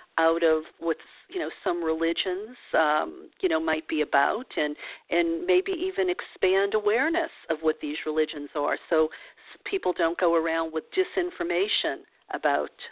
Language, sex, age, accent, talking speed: English, female, 50-69, American, 150 wpm